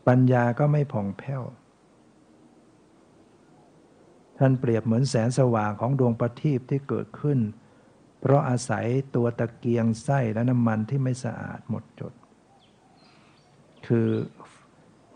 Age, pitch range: 60-79, 115-130 Hz